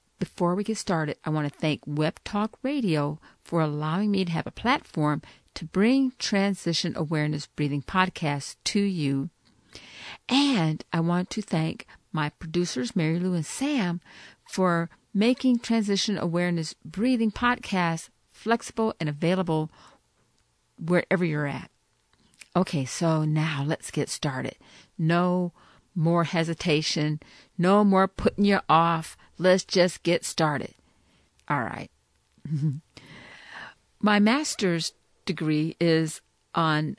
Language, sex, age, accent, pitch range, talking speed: English, female, 50-69, American, 155-200 Hz, 120 wpm